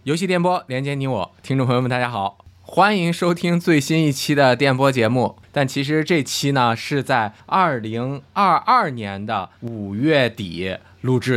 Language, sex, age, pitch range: Chinese, male, 20-39, 115-175 Hz